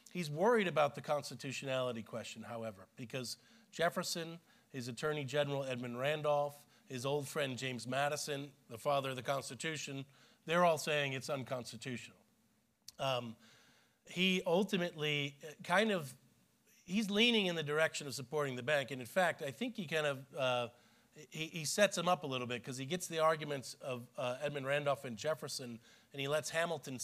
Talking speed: 165 wpm